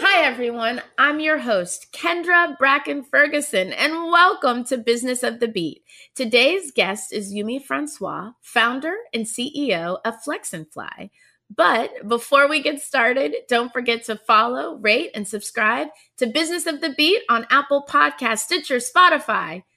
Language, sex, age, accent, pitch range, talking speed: English, female, 30-49, American, 200-270 Hz, 145 wpm